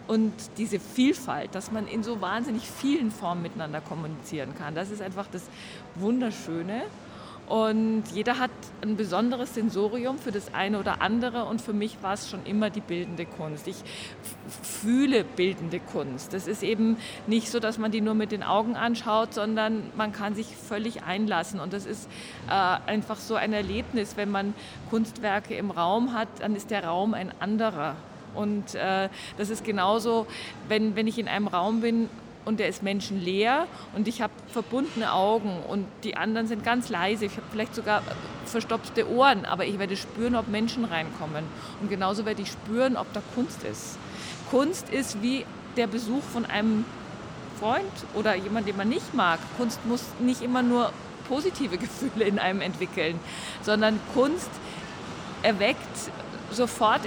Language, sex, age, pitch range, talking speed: German, female, 50-69, 200-230 Hz, 165 wpm